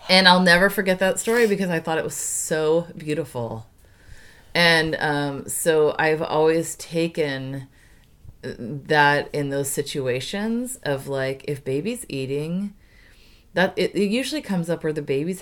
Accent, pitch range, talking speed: American, 125-155 Hz, 145 wpm